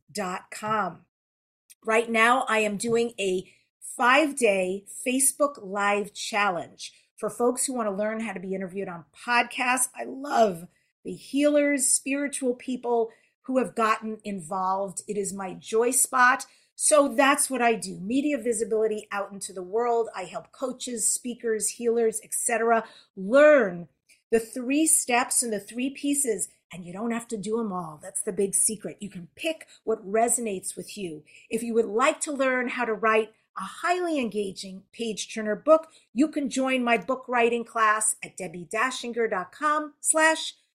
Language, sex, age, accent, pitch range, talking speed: English, female, 40-59, American, 200-255 Hz, 155 wpm